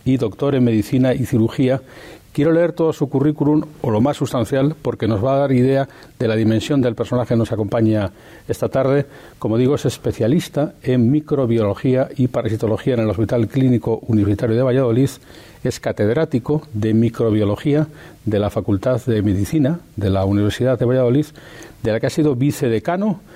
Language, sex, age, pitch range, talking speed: Spanish, male, 40-59, 110-145 Hz, 170 wpm